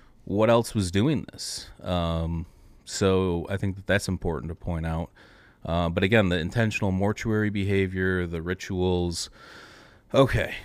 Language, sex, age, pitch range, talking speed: English, male, 30-49, 85-105 Hz, 140 wpm